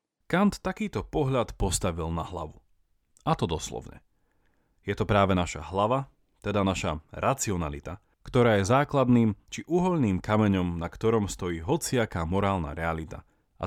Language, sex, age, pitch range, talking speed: Slovak, male, 30-49, 85-125 Hz, 130 wpm